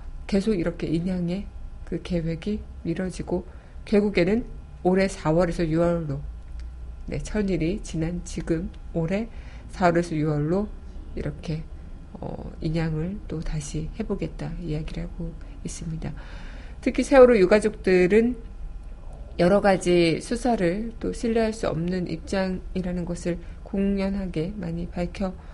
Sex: female